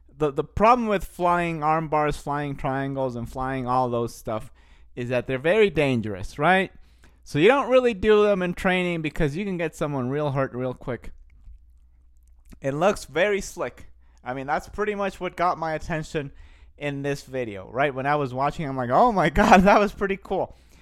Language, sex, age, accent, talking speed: English, male, 30-49, American, 195 wpm